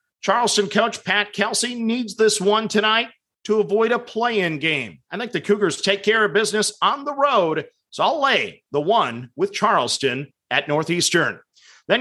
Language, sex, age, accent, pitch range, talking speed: English, male, 40-59, American, 175-220 Hz, 175 wpm